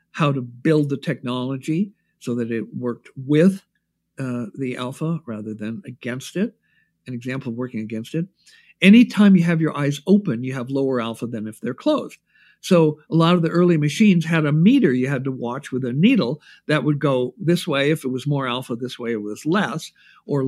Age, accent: 60-79, American